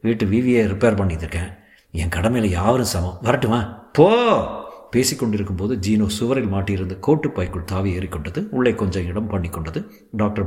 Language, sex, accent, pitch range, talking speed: Tamil, male, native, 100-120 Hz, 140 wpm